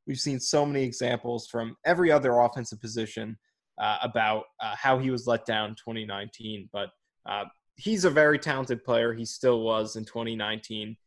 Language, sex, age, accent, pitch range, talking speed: English, male, 20-39, American, 110-130 Hz, 175 wpm